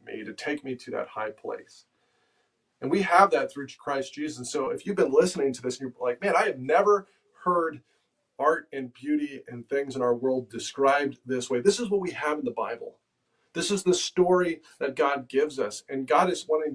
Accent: American